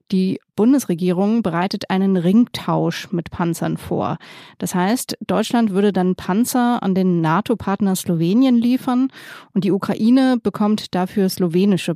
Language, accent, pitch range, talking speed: German, German, 180-215 Hz, 125 wpm